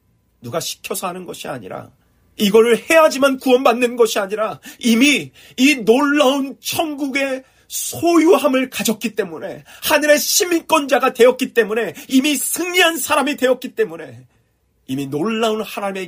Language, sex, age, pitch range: Korean, male, 40-59, 170-260 Hz